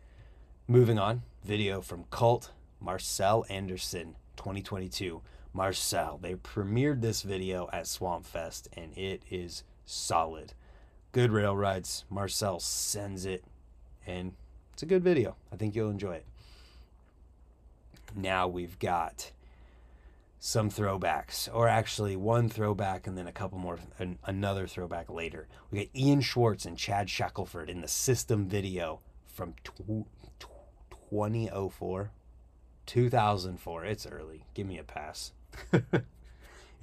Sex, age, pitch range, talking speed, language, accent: male, 30-49, 75-105 Hz, 120 wpm, English, American